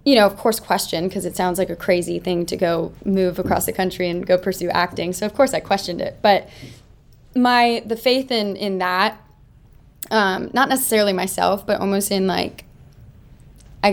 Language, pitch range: English, 175-205 Hz